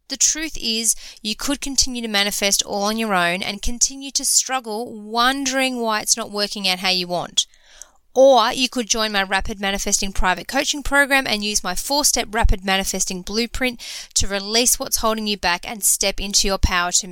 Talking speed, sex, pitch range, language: 190 wpm, female, 195-245 Hz, English